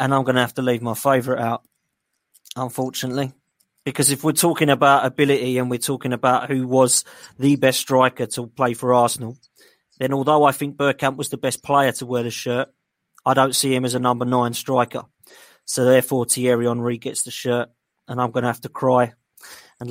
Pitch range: 125-145 Hz